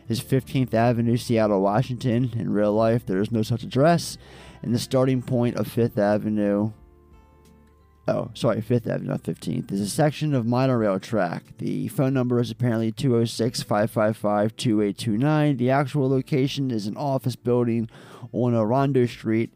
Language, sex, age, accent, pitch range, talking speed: English, male, 20-39, American, 110-135 Hz, 150 wpm